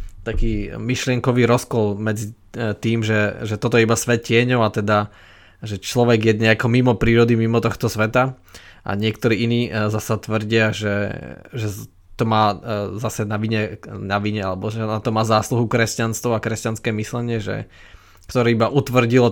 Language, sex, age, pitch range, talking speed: Slovak, male, 20-39, 105-125 Hz, 155 wpm